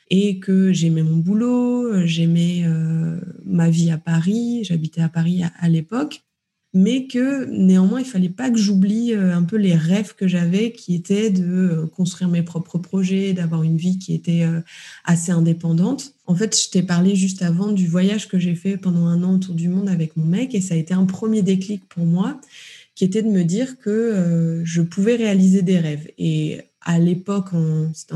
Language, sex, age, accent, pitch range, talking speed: French, female, 20-39, French, 170-205 Hz, 200 wpm